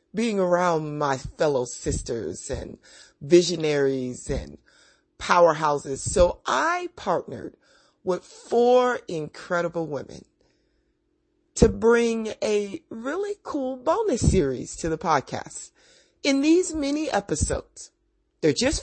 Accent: American